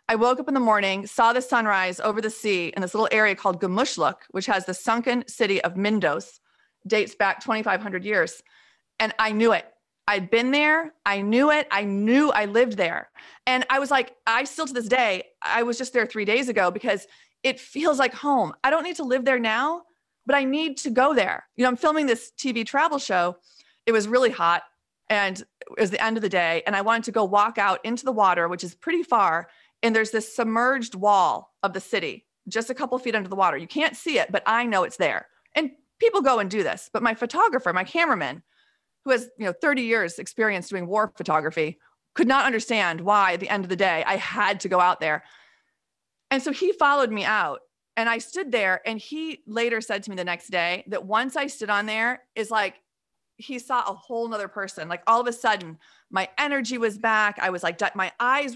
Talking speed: 225 wpm